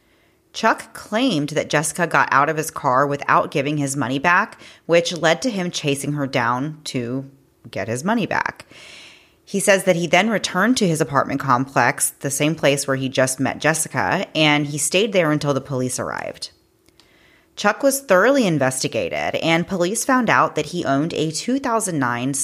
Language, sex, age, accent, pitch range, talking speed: English, female, 30-49, American, 140-175 Hz, 175 wpm